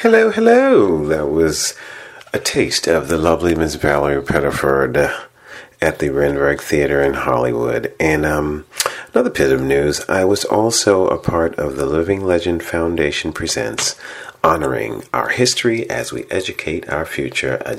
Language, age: English, 40-59